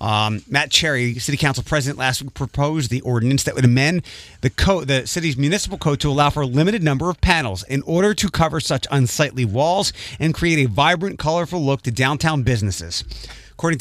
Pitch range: 125-155 Hz